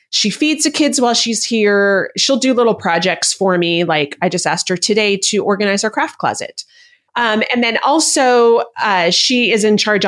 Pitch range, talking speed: 180-245 Hz, 195 wpm